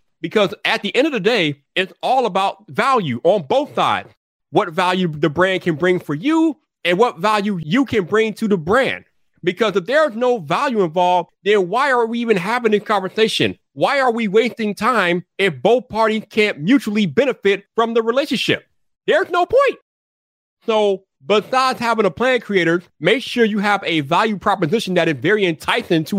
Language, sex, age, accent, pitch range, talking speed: English, male, 40-59, American, 155-215 Hz, 185 wpm